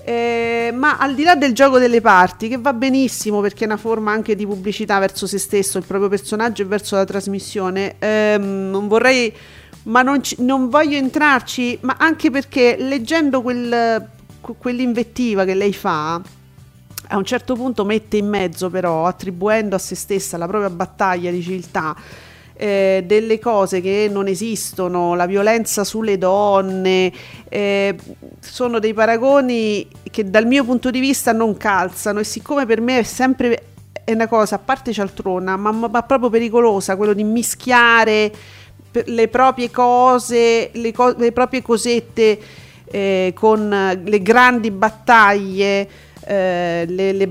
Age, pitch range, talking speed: 40-59, 195-240 Hz, 145 wpm